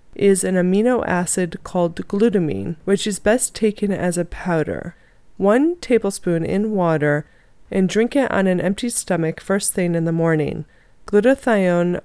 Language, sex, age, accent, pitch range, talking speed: English, female, 30-49, American, 170-200 Hz, 150 wpm